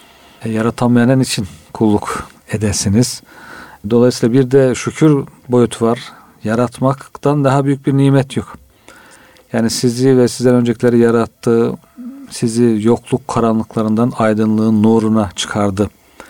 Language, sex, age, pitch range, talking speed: Turkish, male, 50-69, 115-135 Hz, 105 wpm